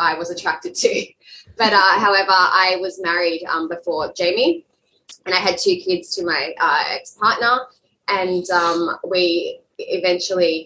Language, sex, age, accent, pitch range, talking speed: English, female, 20-39, Australian, 170-195 Hz, 145 wpm